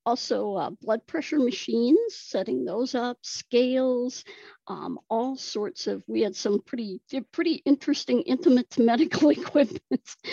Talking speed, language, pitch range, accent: 135 wpm, English, 220-345 Hz, American